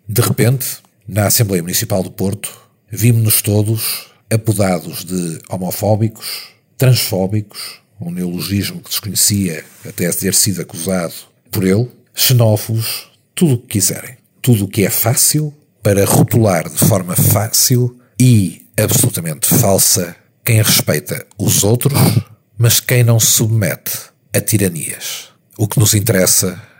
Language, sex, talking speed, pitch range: Portuguese, male, 125 wpm, 100-120 Hz